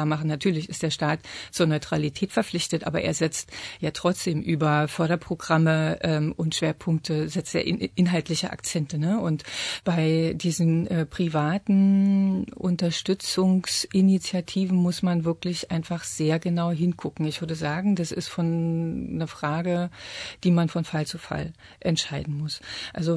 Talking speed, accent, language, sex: 140 wpm, German, German, female